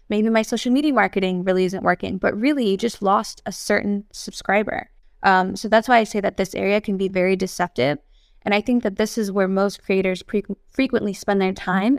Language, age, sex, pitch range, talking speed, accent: English, 20-39, female, 190-230 Hz, 205 wpm, American